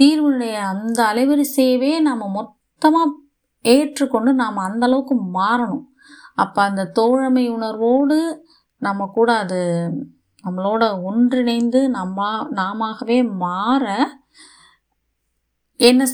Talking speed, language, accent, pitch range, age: 80 wpm, Tamil, native, 190-255 Hz, 20-39